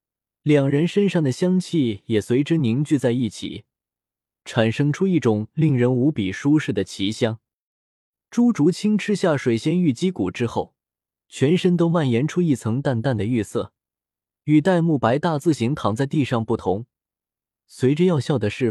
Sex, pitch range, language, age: male, 115-165 Hz, Chinese, 20-39